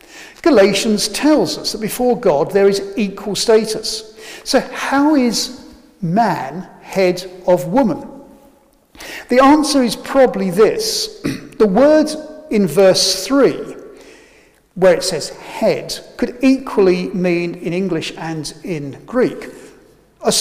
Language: English